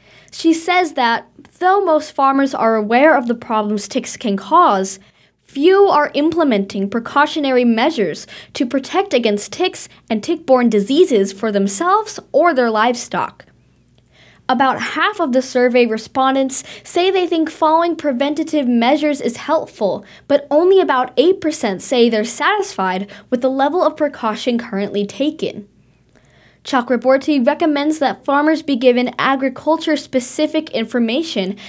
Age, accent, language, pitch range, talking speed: 20-39, American, English, 230-310 Hz, 125 wpm